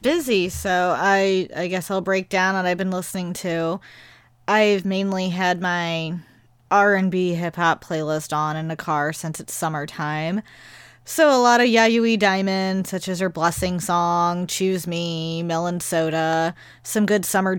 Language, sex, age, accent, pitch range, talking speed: English, female, 20-39, American, 160-195 Hz, 155 wpm